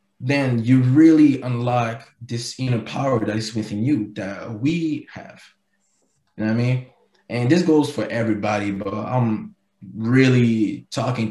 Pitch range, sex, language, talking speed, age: 110-135 Hz, male, English, 150 wpm, 20-39